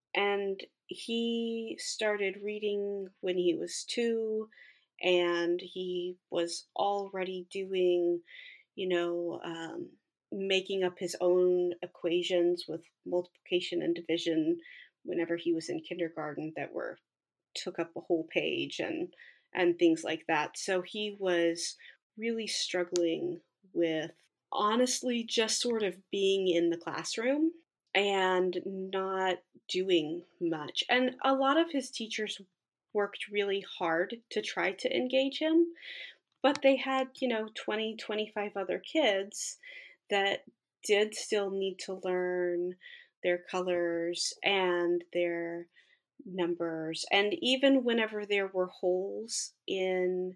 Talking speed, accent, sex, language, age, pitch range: 120 wpm, American, female, English, 30-49, 175-230 Hz